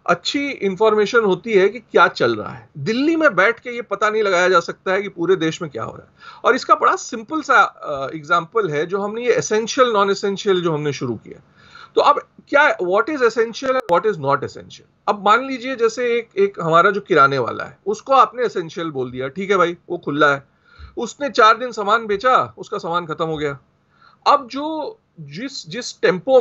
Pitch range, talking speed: 195-275 Hz, 185 wpm